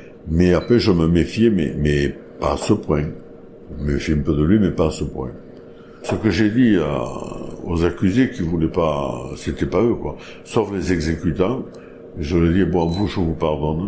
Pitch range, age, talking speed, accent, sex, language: 75-85 Hz, 60-79, 210 wpm, French, male, French